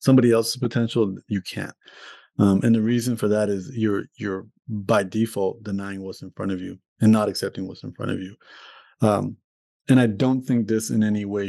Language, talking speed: English, 205 wpm